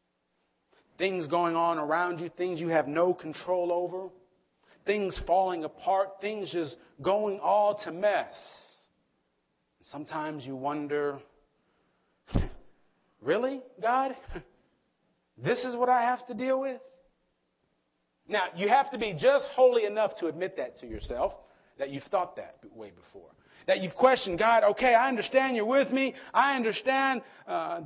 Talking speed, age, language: 140 wpm, 40-59, English